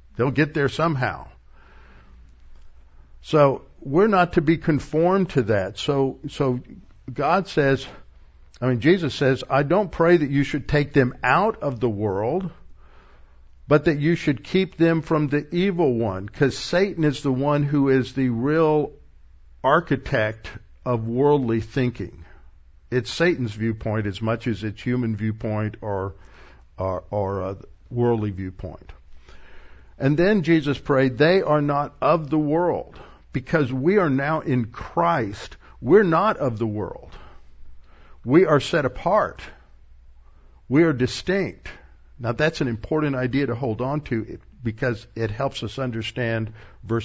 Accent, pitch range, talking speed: American, 95-145 Hz, 145 wpm